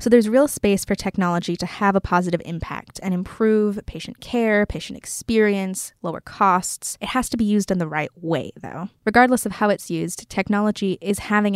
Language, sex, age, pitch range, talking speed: English, female, 10-29, 185-225 Hz, 190 wpm